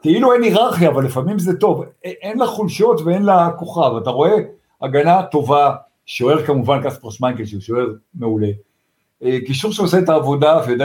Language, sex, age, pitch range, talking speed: Hebrew, male, 50-69, 125-180 Hz, 160 wpm